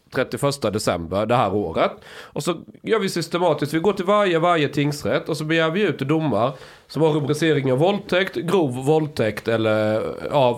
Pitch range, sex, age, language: 115-175 Hz, male, 30-49, Swedish